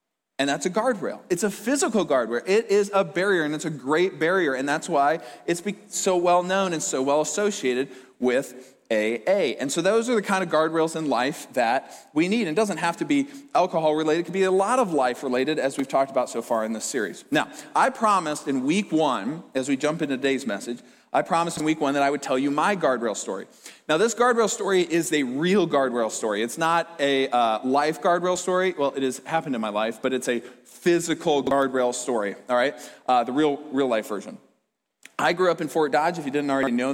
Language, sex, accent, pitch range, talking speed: English, male, American, 130-175 Hz, 230 wpm